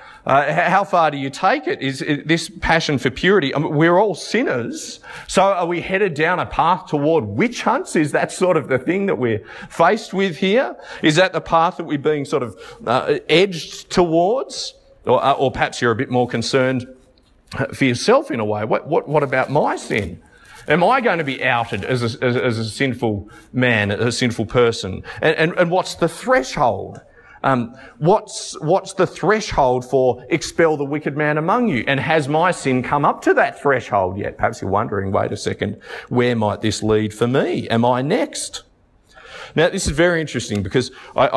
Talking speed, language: 190 wpm, English